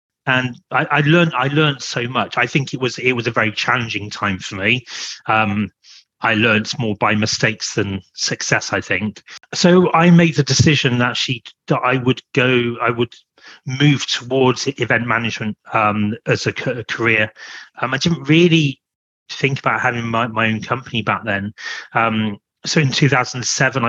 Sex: male